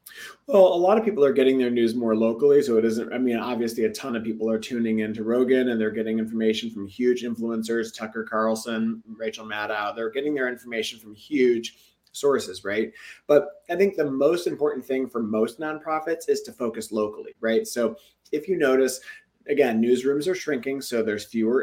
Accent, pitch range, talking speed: American, 110-150 Hz, 195 wpm